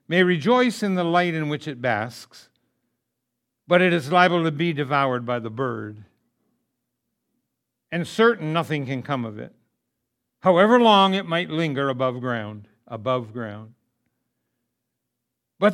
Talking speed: 135 wpm